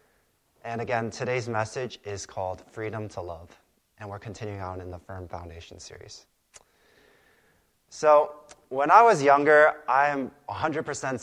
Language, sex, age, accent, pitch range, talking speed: English, male, 20-39, American, 100-120 Hz, 140 wpm